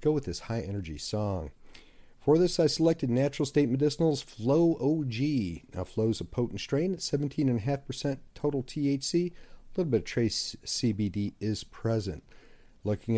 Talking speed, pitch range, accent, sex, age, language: 170 wpm, 110-150 Hz, American, male, 40-59, English